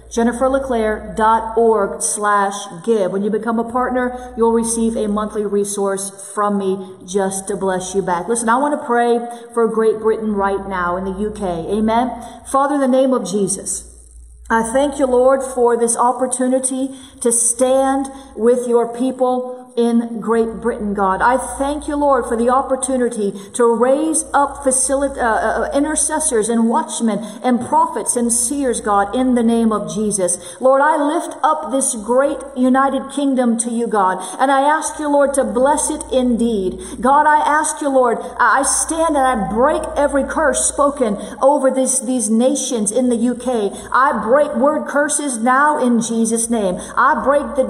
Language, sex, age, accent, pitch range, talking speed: English, female, 40-59, American, 220-270 Hz, 165 wpm